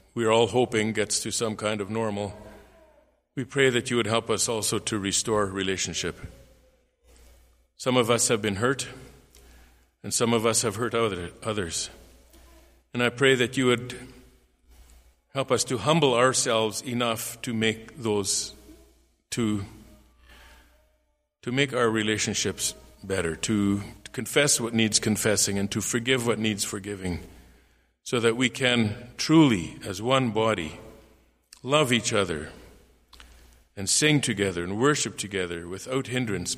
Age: 50-69